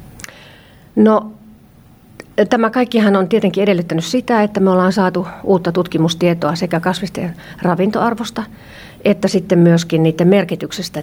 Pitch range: 165-200 Hz